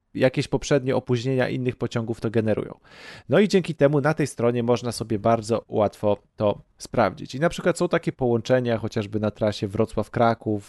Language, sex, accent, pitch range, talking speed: Polish, male, native, 120-155 Hz, 170 wpm